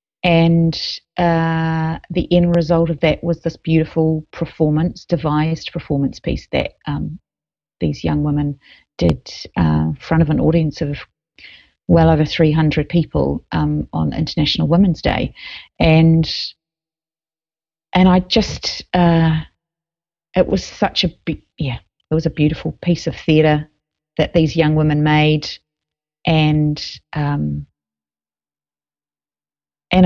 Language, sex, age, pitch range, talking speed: English, female, 40-59, 145-165 Hz, 120 wpm